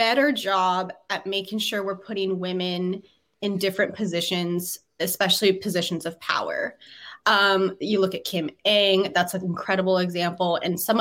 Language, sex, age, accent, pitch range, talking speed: English, female, 20-39, American, 185-215 Hz, 145 wpm